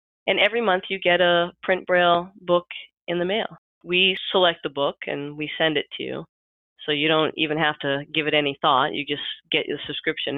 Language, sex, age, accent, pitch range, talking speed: English, female, 30-49, American, 150-190 Hz, 215 wpm